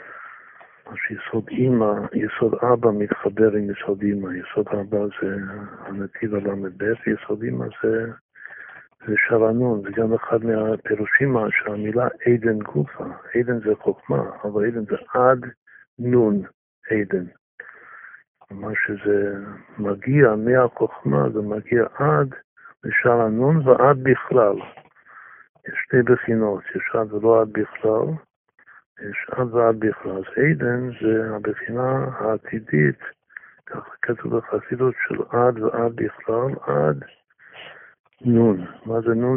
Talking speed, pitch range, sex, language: 115 wpm, 105-120 Hz, male, Hebrew